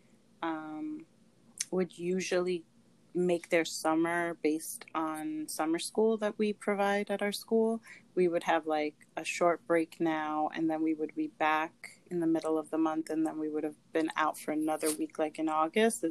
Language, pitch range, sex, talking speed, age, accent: English, 160-185 Hz, female, 185 wpm, 30-49, American